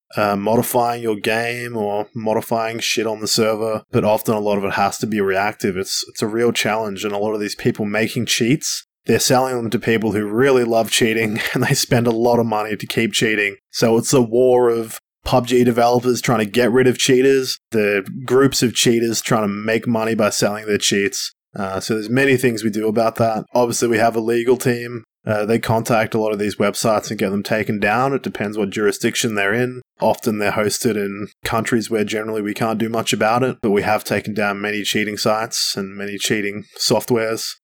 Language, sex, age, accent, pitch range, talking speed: English, male, 20-39, Australian, 105-125 Hz, 215 wpm